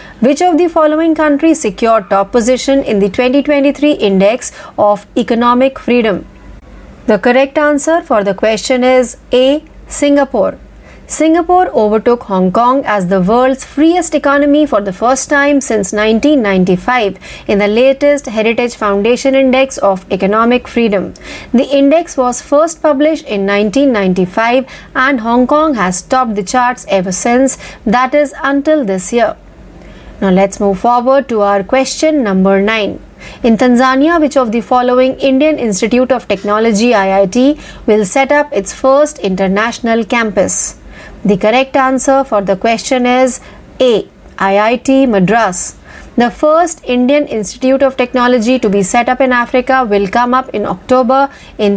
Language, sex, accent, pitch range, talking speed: Marathi, female, native, 210-275 Hz, 145 wpm